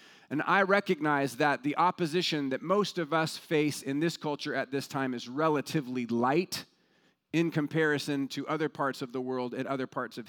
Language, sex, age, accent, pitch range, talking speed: English, male, 40-59, American, 150-185 Hz, 185 wpm